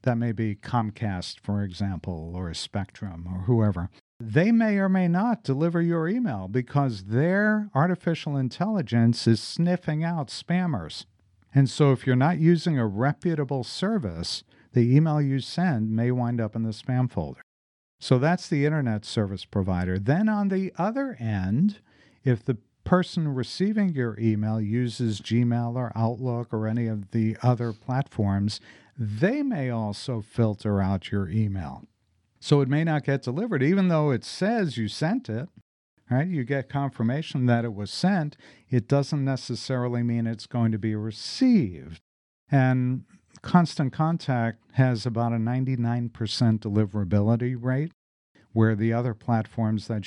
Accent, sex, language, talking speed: American, male, English, 150 wpm